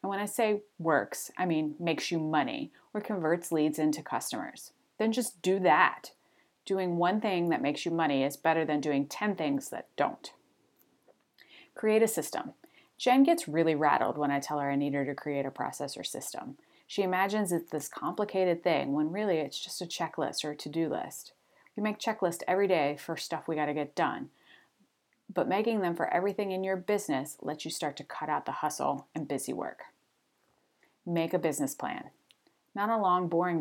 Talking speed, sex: 195 wpm, female